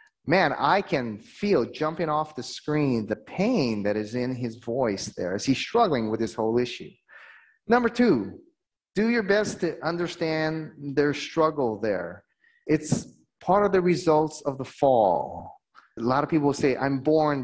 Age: 30-49